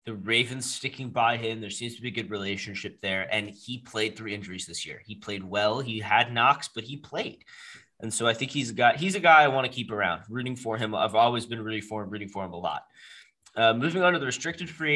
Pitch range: 105-135 Hz